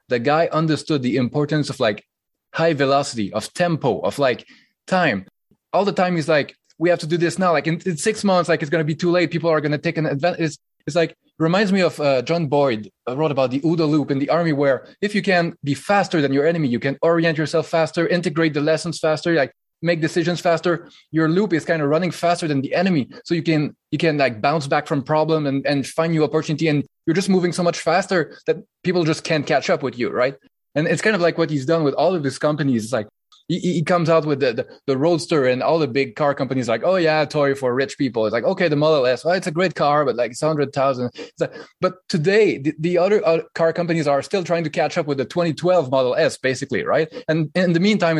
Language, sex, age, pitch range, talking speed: English, male, 20-39, 145-175 Hz, 255 wpm